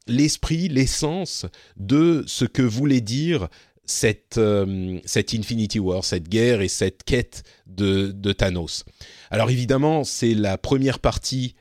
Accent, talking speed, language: French, 135 wpm, French